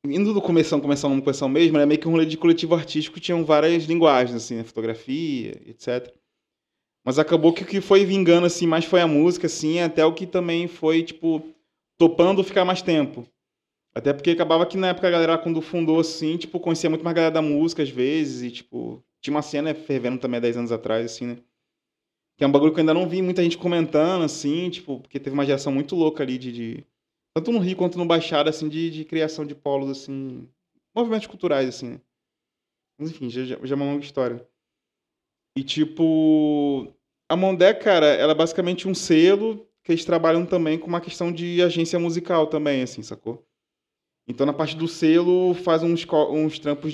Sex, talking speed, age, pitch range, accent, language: male, 205 wpm, 20-39, 135-170 Hz, Brazilian, Portuguese